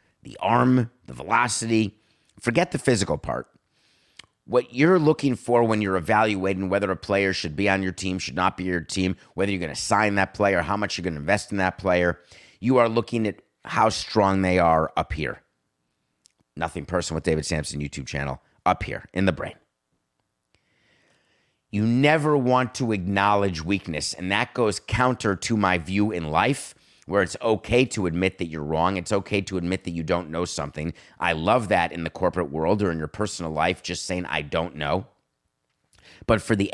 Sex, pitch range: male, 90-120 Hz